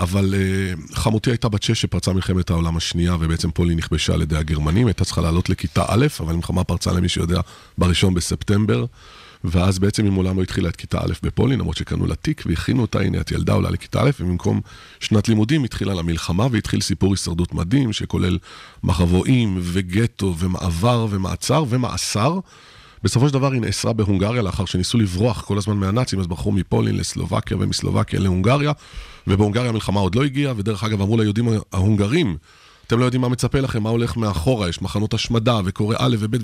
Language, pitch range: Hebrew, 90-115 Hz